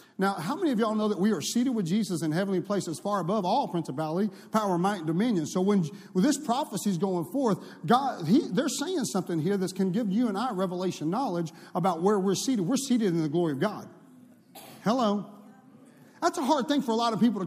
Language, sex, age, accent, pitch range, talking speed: English, male, 40-59, American, 205-275 Hz, 230 wpm